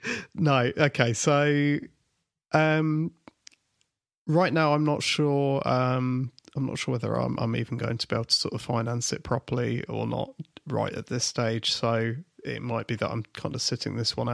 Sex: male